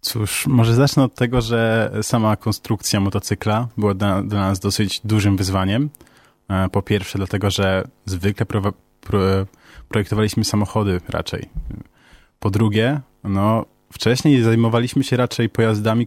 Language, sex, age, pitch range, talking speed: Polish, male, 20-39, 100-120 Hz, 125 wpm